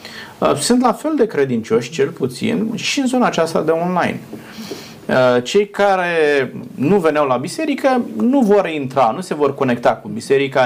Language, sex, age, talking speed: Romanian, male, 30-49, 160 wpm